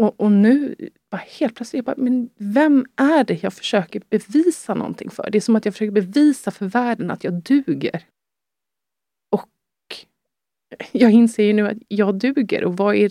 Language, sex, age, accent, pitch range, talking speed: Swedish, female, 30-49, native, 180-235 Hz, 180 wpm